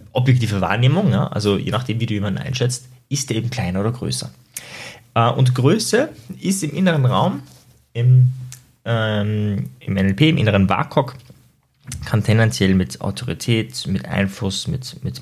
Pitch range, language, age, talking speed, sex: 105-130 Hz, German, 20-39, 145 wpm, male